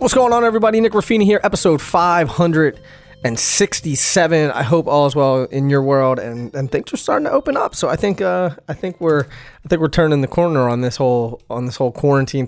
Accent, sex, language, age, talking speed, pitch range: American, male, English, 20-39, 230 wpm, 115-145 Hz